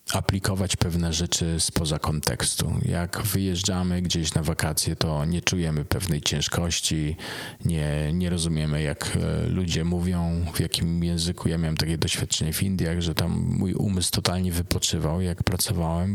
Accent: native